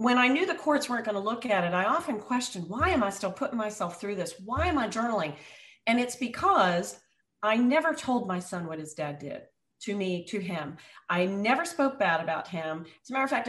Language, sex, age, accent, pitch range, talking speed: English, female, 40-59, American, 175-230 Hz, 235 wpm